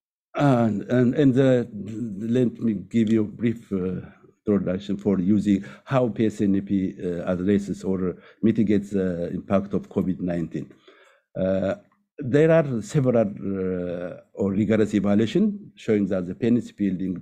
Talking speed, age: 130 wpm, 60-79